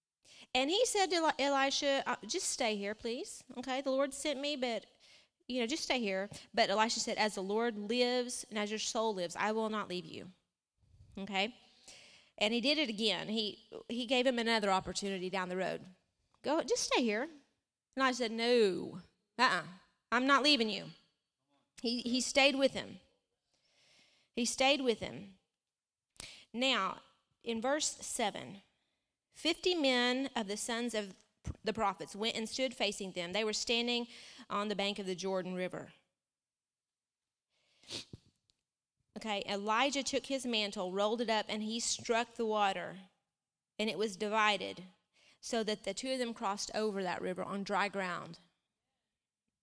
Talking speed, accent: 160 wpm, American